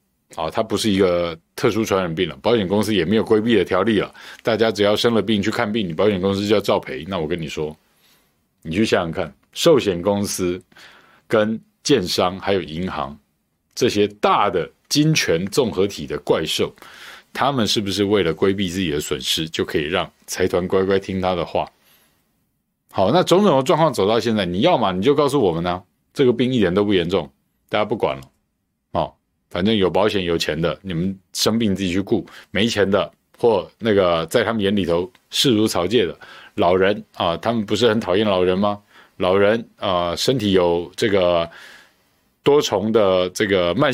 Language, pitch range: Chinese, 95-120 Hz